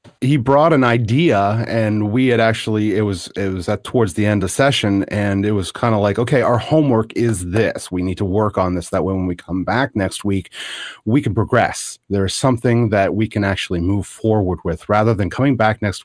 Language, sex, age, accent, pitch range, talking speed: English, male, 30-49, American, 95-120 Hz, 230 wpm